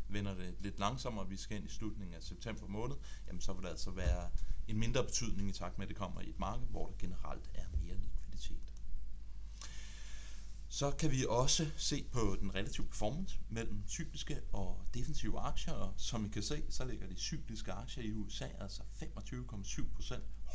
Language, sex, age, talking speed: Danish, male, 30-49, 190 wpm